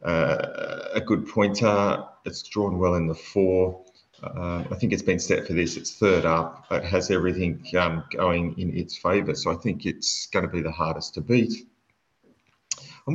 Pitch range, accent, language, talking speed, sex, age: 80-100 Hz, Australian, English, 185 wpm, male, 30-49